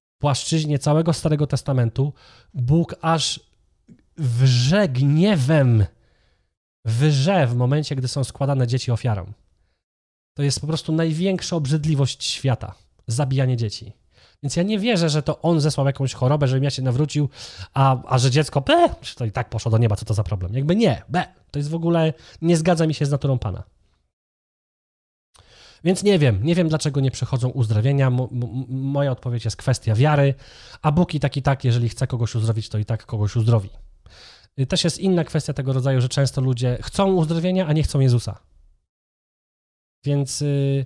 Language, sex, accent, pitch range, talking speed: Polish, male, native, 120-150 Hz, 165 wpm